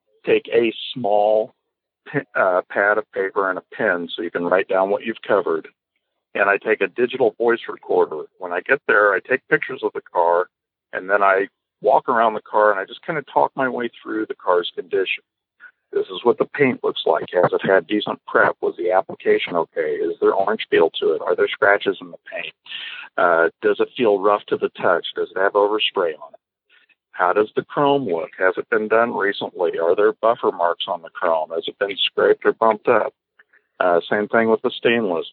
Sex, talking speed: male, 215 wpm